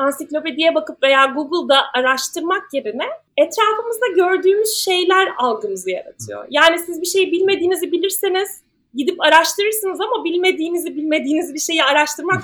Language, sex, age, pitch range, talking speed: Turkish, female, 30-49, 270-360 Hz, 120 wpm